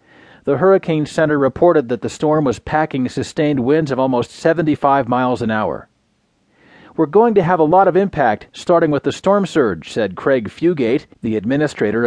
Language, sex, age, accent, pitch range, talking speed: English, male, 40-59, American, 125-160 Hz, 175 wpm